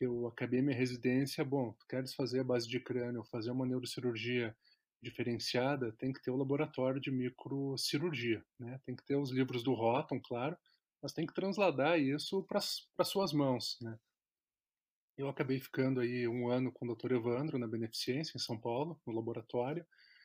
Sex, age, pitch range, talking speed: male, 20-39, 125-155 Hz, 175 wpm